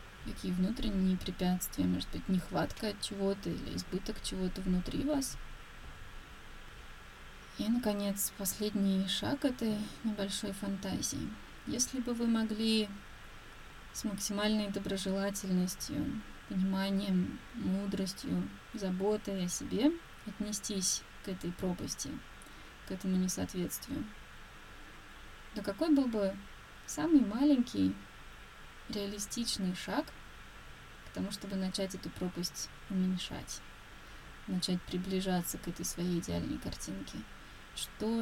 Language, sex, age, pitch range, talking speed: Russian, female, 20-39, 175-205 Hz, 95 wpm